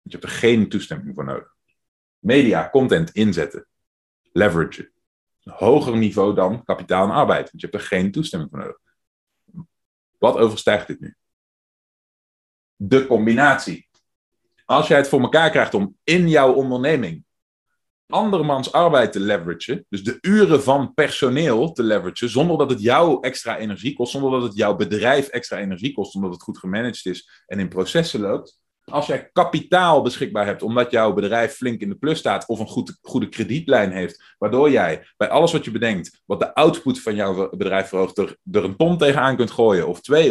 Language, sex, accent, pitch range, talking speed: Dutch, male, Dutch, 105-145 Hz, 180 wpm